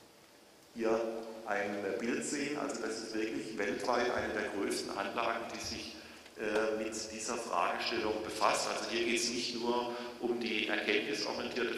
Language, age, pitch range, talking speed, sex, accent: German, 50-69, 110-125 Hz, 150 wpm, male, German